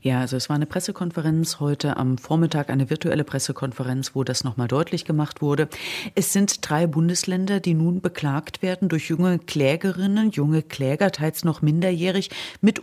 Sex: female